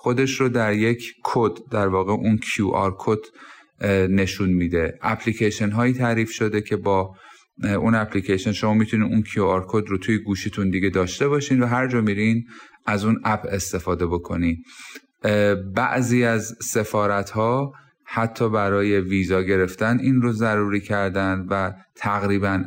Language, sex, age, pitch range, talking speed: Persian, male, 30-49, 100-120 Hz, 145 wpm